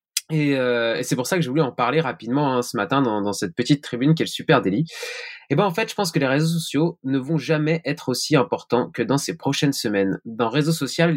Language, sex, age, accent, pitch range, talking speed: French, male, 20-39, French, 120-155 Hz, 255 wpm